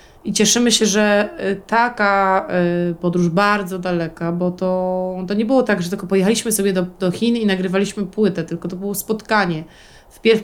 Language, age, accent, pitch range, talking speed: Polish, 20-39, native, 195-230 Hz, 165 wpm